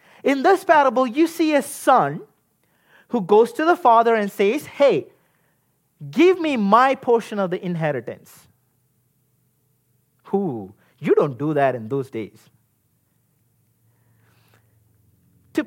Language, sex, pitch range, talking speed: English, male, 155-255 Hz, 120 wpm